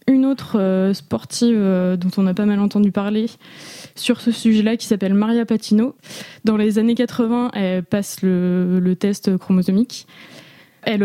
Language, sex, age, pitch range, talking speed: French, female, 20-39, 190-225 Hz, 150 wpm